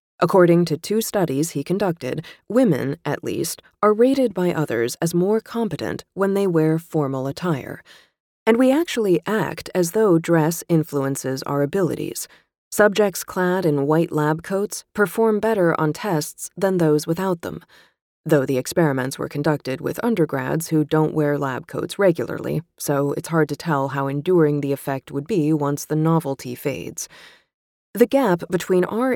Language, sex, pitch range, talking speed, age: English, female, 150-195 Hz, 160 wpm, 30-49